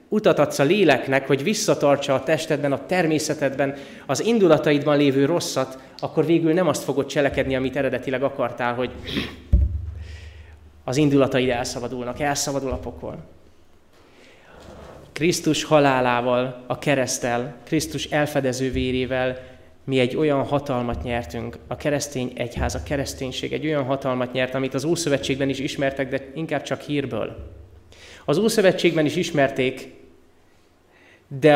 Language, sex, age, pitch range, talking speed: Hungarian, male, 20-39, 125-145 Hz, 125 wpm